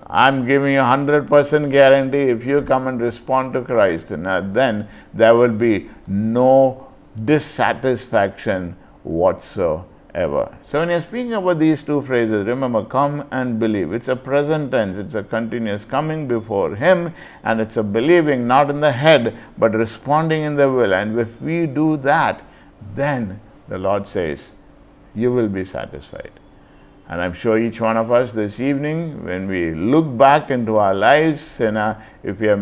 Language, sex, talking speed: English, male, 160 wpm